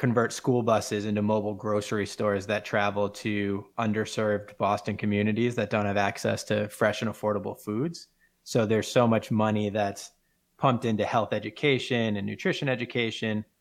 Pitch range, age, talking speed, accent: 105-120 Hz, 20-39, 155 wpm, American